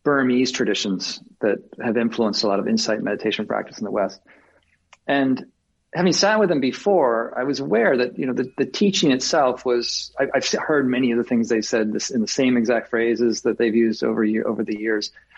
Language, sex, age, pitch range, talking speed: English, male, 40-59, 115-150 Hz, 205 wpm